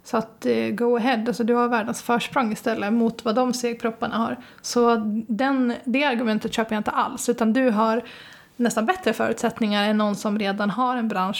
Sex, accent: female, native